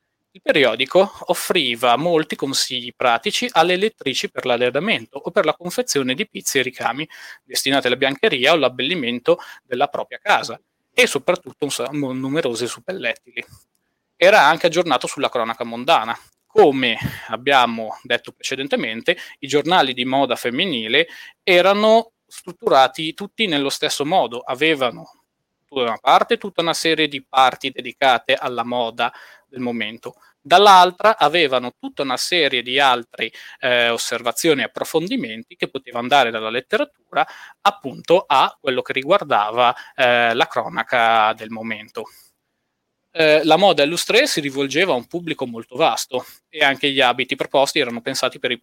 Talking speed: 140 wpm